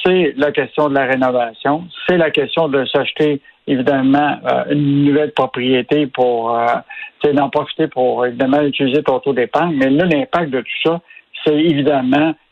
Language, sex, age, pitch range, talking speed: French, male, 60-79, 135-165 Hz, 165 wpm